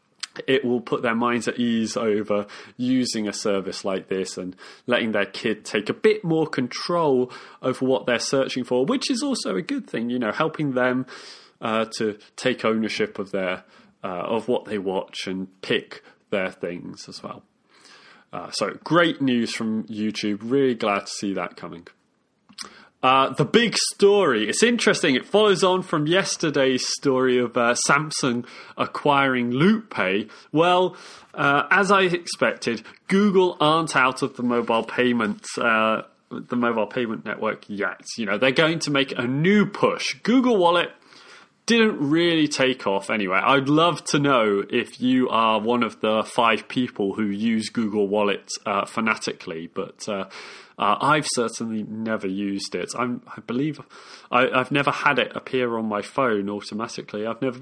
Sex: male